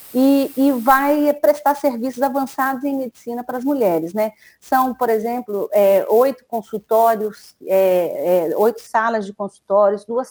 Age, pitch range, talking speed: 40-59, 200-235 Hz, 130 wpm